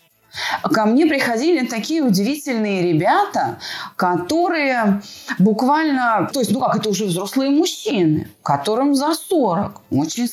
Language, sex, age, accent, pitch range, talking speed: Russian, female, 30-49, native, 180-265 Hz, 115 wpm